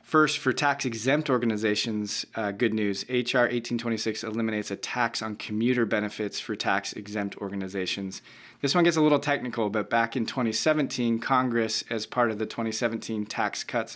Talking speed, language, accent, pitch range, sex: 155 wpm, English, American, 105-120 Hz, male